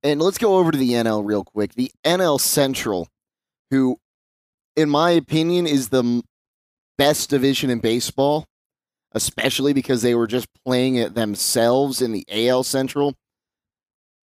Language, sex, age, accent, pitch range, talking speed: English, male, 30-49, American, 115-140 Hz, 145 wpm